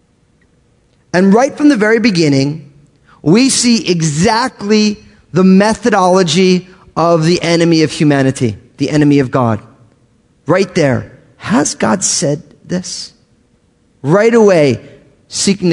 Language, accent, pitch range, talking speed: English, American, 135-210 Hz, 110 wpm